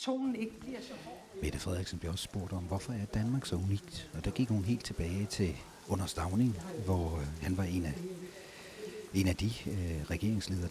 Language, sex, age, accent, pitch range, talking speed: Danish, male, 60-79, native, 85-105 Hz, 150 wpm